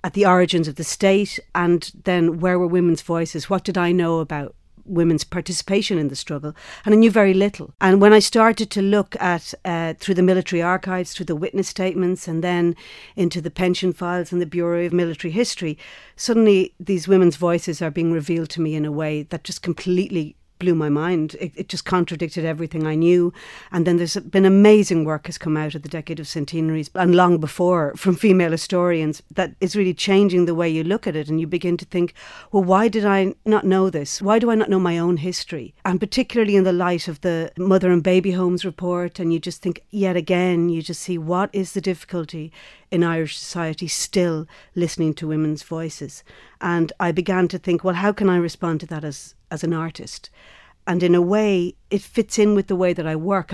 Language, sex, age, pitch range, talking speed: English, female, 50-69, 165-185 Hz, 215 wpm